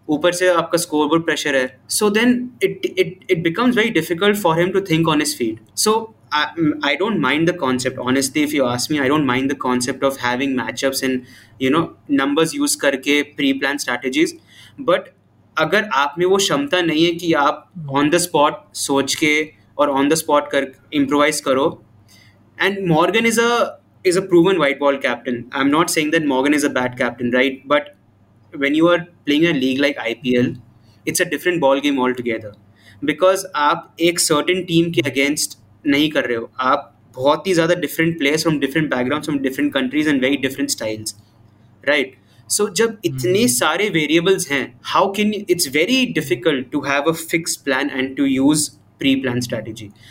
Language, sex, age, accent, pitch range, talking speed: Hindi, male, 20-39, native, 130-175 Hz, 185 wpm